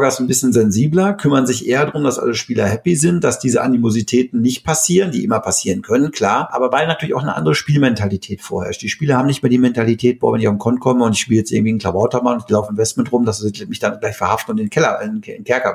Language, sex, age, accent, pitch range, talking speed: German, male, 50-69, German, 115-135 Hz, 265 wpm